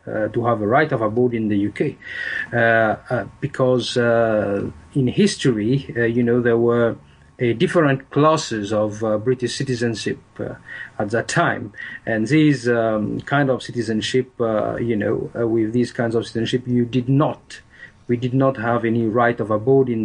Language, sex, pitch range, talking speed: English, male, 115-145 Hz, 175 wpm